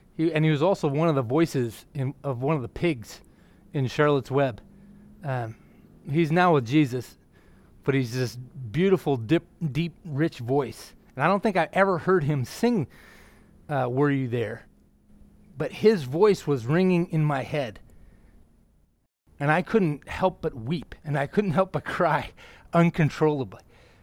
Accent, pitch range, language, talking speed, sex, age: American, 135-195 Hz, English, 155 wpm, male, 30-49